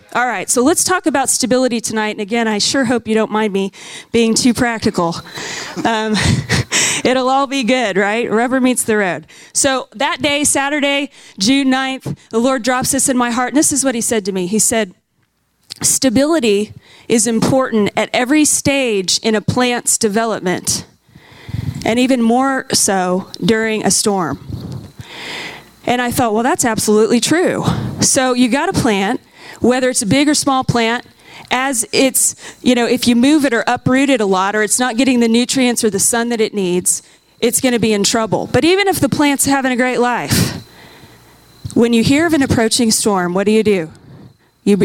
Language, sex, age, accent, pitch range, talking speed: English, female, 30-49, American, 210-260 Hz, 190 wpm